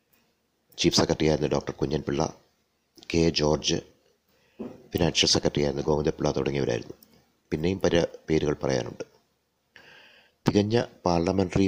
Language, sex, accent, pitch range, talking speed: Malayalam, male, native, 70-90 Hz, 100 wpm